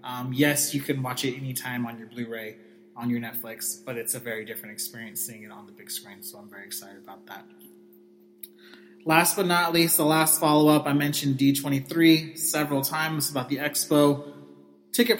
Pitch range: 130-155 Hz